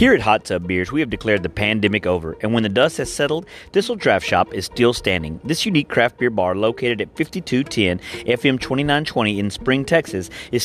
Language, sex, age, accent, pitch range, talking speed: English, male, 30-49, American, 105-165 Hz, 215 wpm